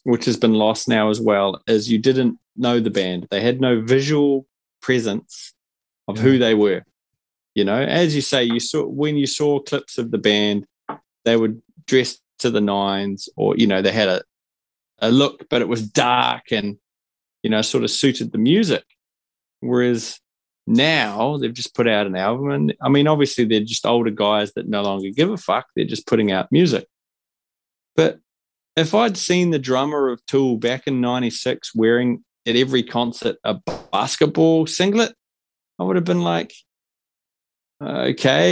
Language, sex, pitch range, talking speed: English, male, 105-140 Hz, 175 wpm